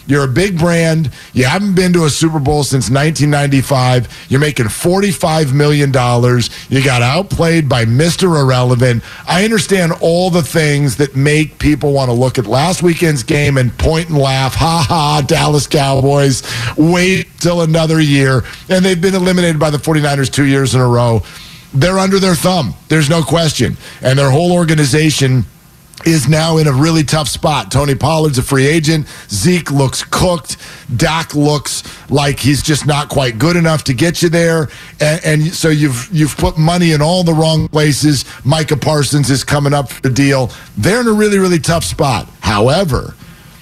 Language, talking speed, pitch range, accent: English, 175 wpm, 135-165 Hz, American